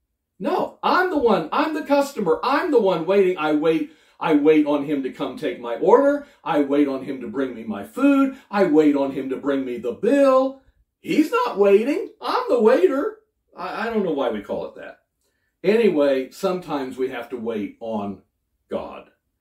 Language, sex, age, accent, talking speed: English, male, 50-69, American, 190 wpm